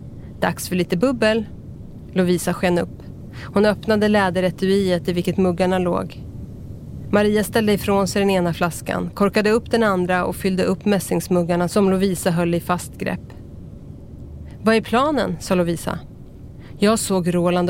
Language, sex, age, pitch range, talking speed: Swedish, female, 30-49, 175-210 Hz, 145 wpm